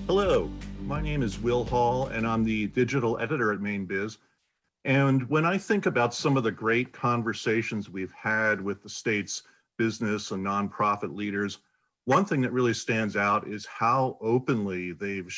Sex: male